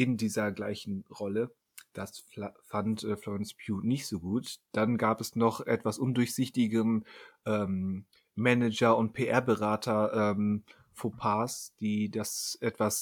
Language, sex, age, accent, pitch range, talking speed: German, male, 30-49, German, 105-125 Hz, 115 wpm